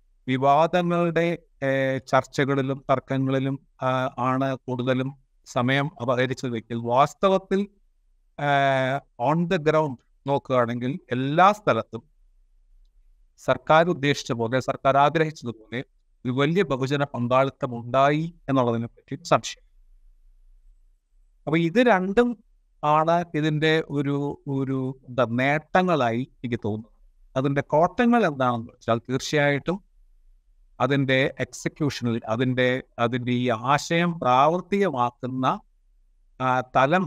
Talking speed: 85 wpm